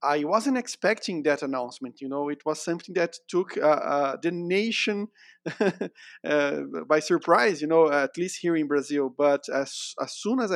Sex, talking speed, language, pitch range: male, 180 wpm, English, 145-175 Hz